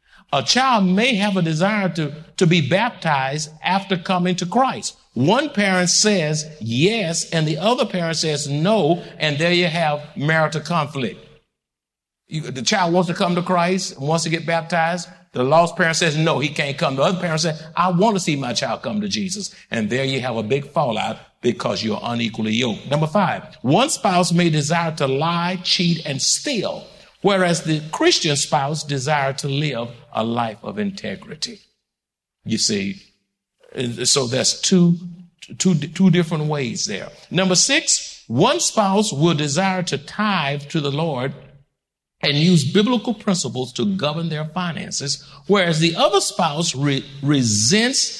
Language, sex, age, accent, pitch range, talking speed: English, male, 50-69, American, 145-185 Hz, 160 wpm